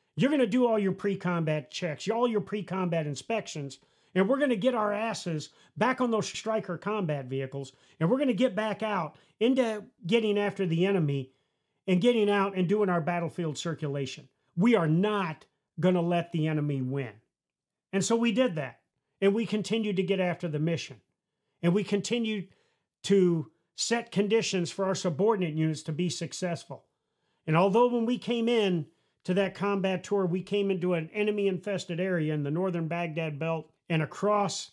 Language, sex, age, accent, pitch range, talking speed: English, male, 40-59, American, 155-200 Hz, 180 wpm